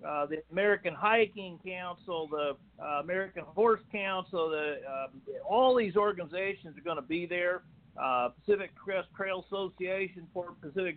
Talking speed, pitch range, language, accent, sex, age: 150 wpm, 165-205 Hz, English, American, male, 50-69